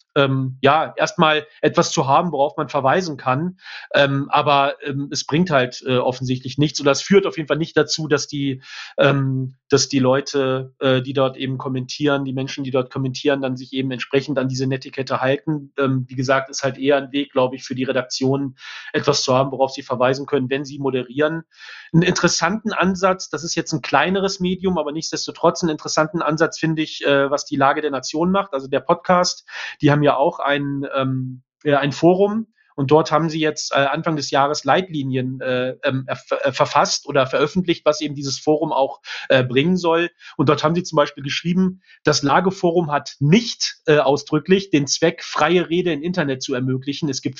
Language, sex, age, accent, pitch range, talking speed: English, male, 40-59, German, 135-160 Hz, 190 wpm